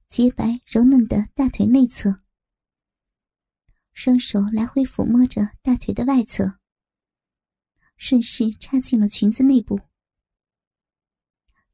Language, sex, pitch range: Chinese, male, 220-255 Hz